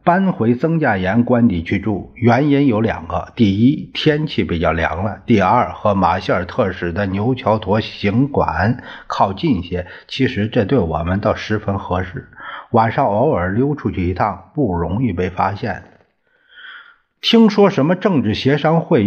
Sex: male